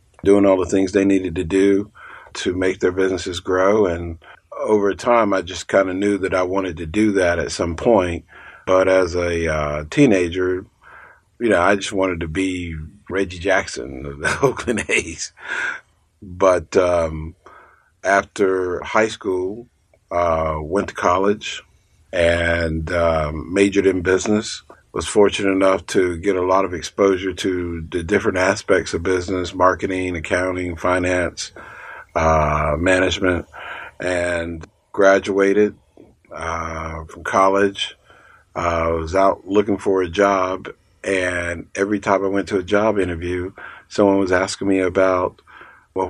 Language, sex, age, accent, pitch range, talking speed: English, male, 50-69, American, 85-95 Hz, 145 wpm